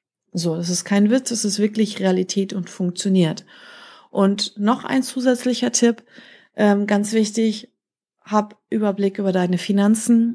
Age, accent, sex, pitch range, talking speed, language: 30-49, German, female, 185-215 Hz, 140 wpm, German